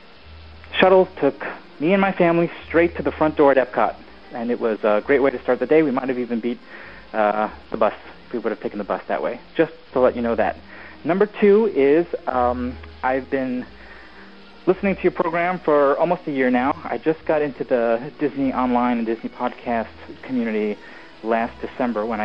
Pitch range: 115-165 Hz